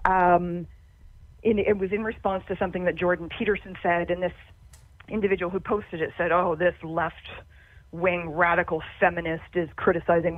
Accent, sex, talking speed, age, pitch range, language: American, female, 155 wpm, 40-59, 160-205 Hz, English